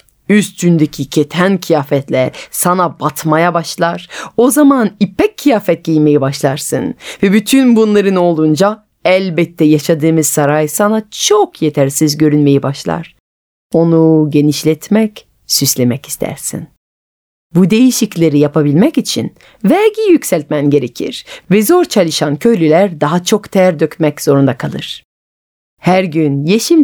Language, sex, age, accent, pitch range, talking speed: Turkish, female, 40-59, native, 150-205 Hz, 105 wpm